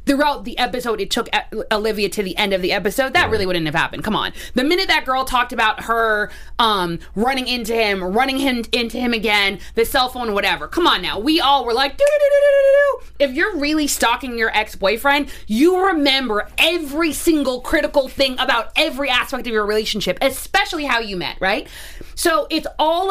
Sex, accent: female, American